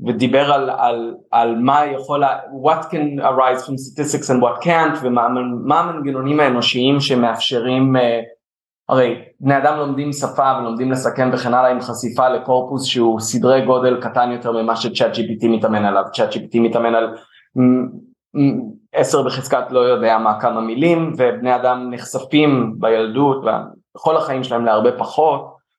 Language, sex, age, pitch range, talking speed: Hebrew, male, 20-39, 120-140 Hz, 150 wpm